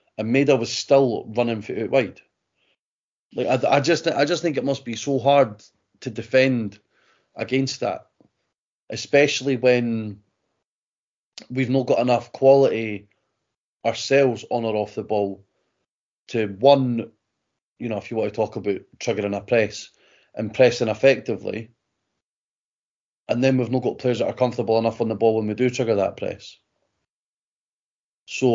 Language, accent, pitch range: English, British, 110-130 Hz